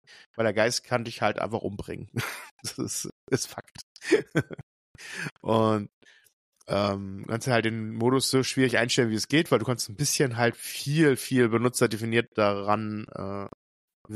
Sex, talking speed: male, 150 wpm